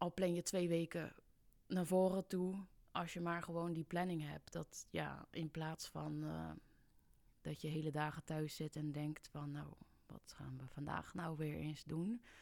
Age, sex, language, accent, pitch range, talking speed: 20-39, female, Dutch, Dutch, 155-175 Hz, 190 wpm